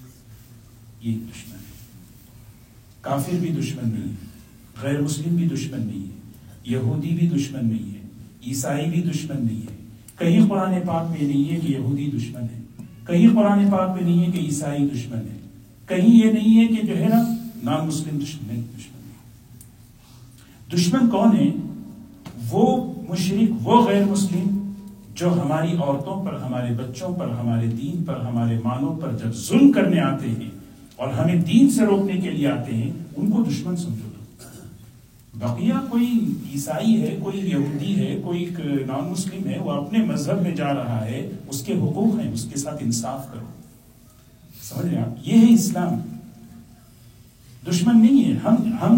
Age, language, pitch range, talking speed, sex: 50-69, English, 120-185 Hz, 130 wpm, male